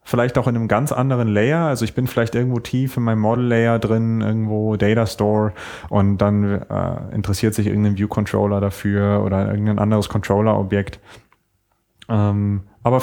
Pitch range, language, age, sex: 105-130 Hz, German, 30-49, male